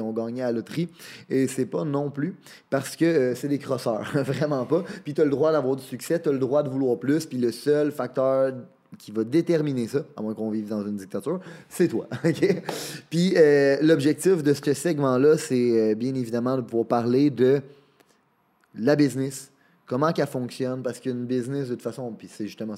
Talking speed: 210 wpm